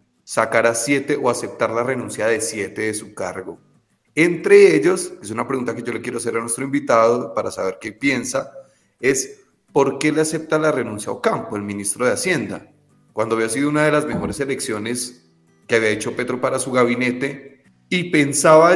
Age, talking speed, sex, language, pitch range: 30-49, 190 wpm, male, Spanish, 115-145 Hz